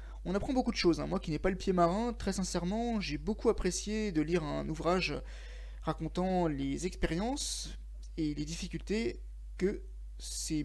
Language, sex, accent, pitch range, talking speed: French, male, French, 155-215 Hz, 170 wpm